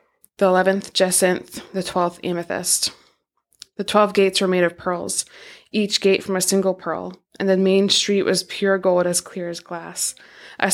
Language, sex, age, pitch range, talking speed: English, female, 20-39, 175-195 Hz, 175 wpm